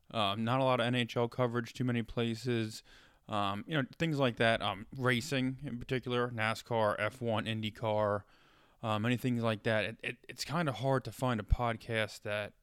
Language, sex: English, male